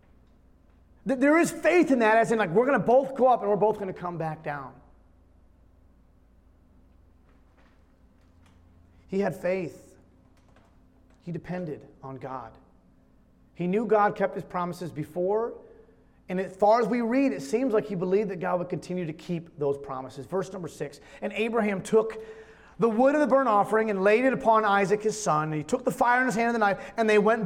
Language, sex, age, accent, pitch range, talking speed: English, male, 30-49, American, 145-225 Hz, 190 wpm